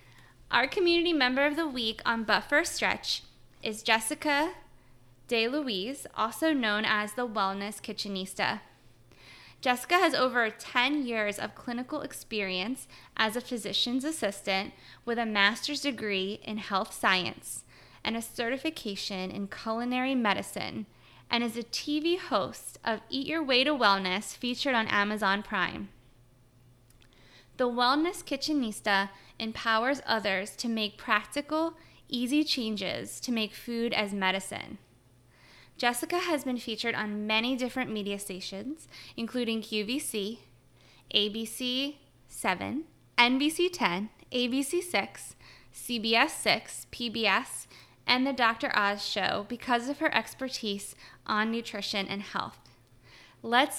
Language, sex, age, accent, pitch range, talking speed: English, female, 20-39, American, 200-255 Hz, 115 wpm